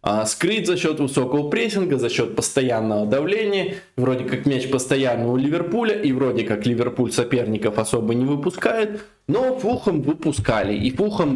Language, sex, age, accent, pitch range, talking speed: Russian, male, 20-39, native, 115-145 Hz, 150 wpm